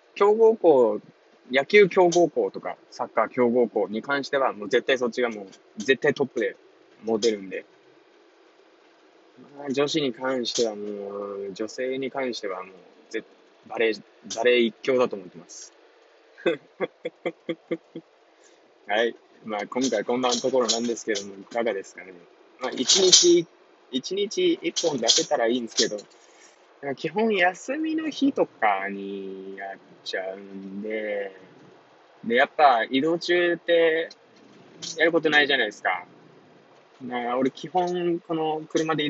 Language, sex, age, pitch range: Japanese, male, 20-39, 115-175 Hz